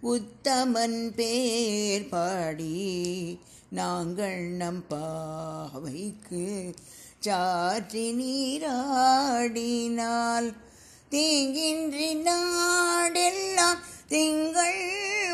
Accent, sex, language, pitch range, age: native, female, Tamil, 195-295 Hz, 50-69